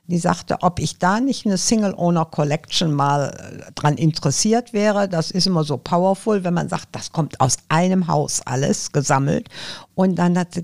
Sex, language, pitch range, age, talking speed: female, German, 155-200 Hz, 60-79, 185 wpm